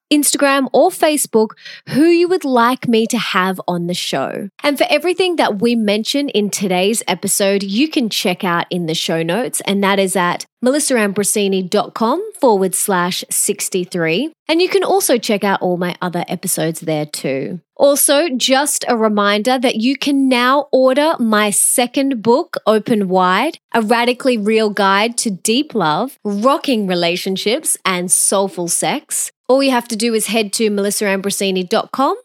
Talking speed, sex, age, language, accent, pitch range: 160 wpm, female, 20-39, English, Australian, 195-270 Hz